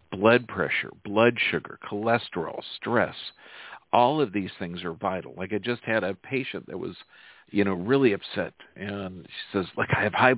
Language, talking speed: English, 180 wpm